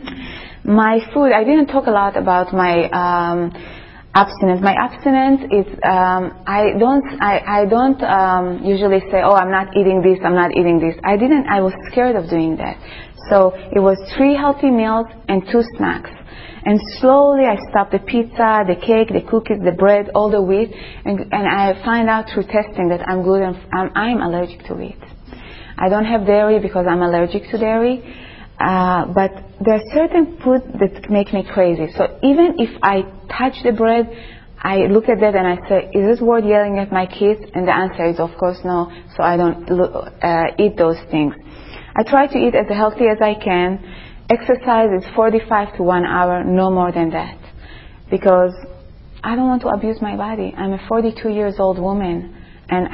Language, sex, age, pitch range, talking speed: English, female, 20-39, 180-225 Hz, 190 wpm